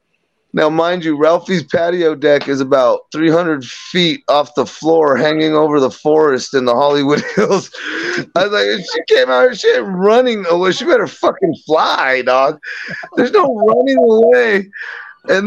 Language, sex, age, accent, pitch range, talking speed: English, male, 30-49, American, 155-185 Hz, 165 wpm